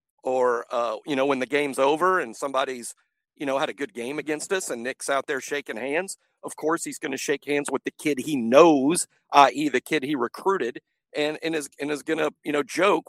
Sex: male